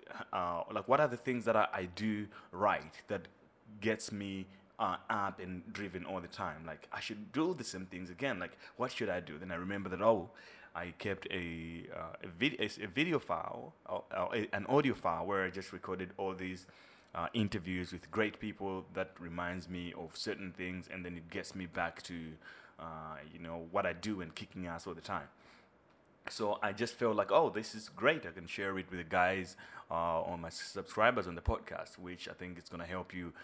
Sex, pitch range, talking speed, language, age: male, 90-105 Hz, 215 wpm, English, 20-39